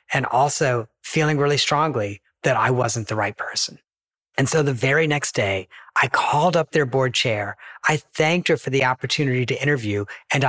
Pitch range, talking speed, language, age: 115-150 Hz, 185 wpm, English, 40-59